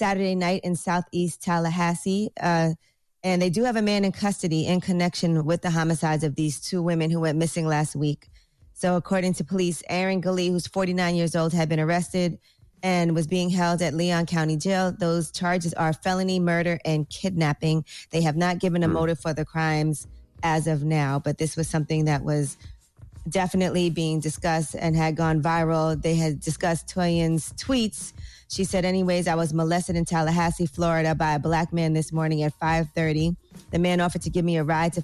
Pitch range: 160-180 Hz